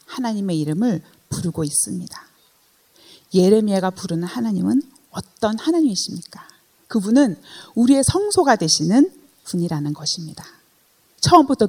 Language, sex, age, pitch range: Korean, female, 30-49, 170-270 Hz